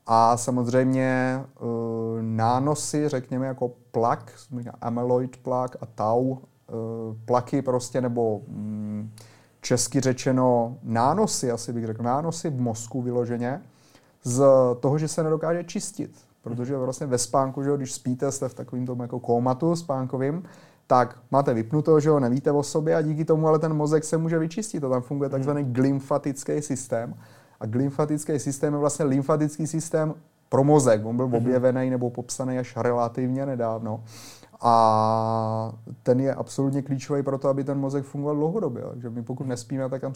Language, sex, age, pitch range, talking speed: Czech, male, 30-49, 120-140 Hz, 150 wpm